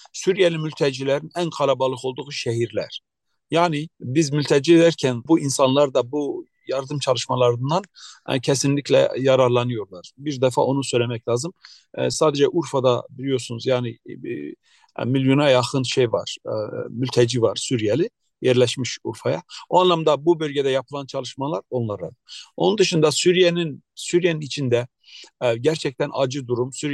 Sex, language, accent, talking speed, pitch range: male, Turkish, native, 115 wpm, 125-155 Hz